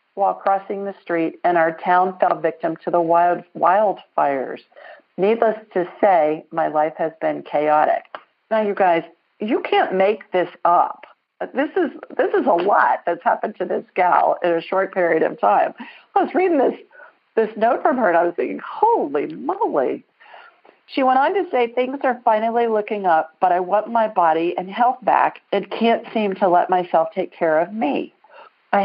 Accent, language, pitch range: American, English, 170-225 Hz